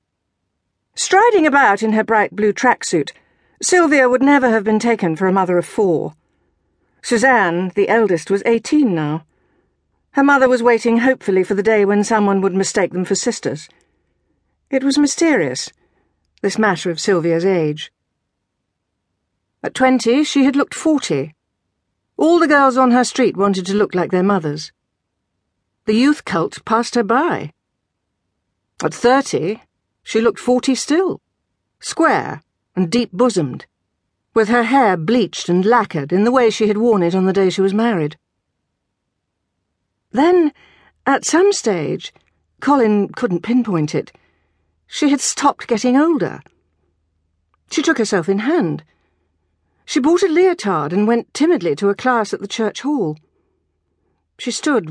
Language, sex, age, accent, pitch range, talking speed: English, female, 50-69, British, 180-260 Hz, 145 wpm